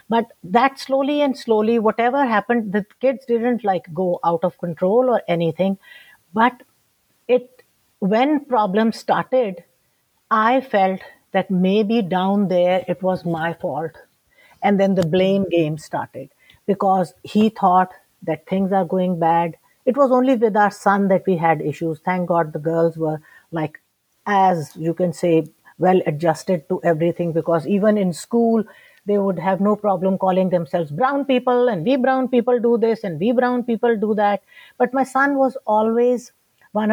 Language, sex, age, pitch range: English, female, 60-79, 180-230 Hz